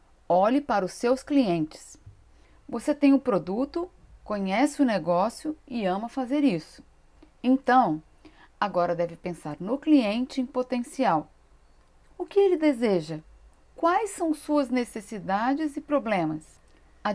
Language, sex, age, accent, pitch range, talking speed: Portuguese, female, 40-59, Brazilian, 185-275 Hz, 125 wpm